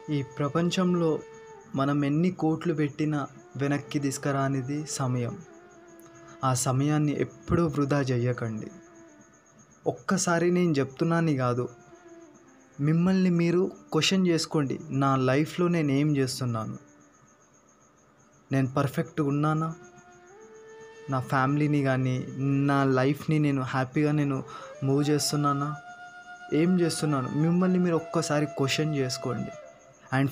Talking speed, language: 95 wpm, Telugu